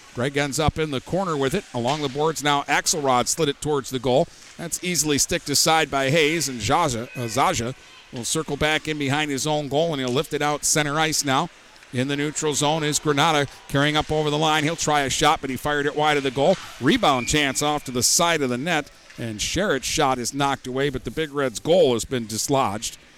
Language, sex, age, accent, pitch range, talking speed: English, male, 50-69, American, 125-155 Hz, 230 wpm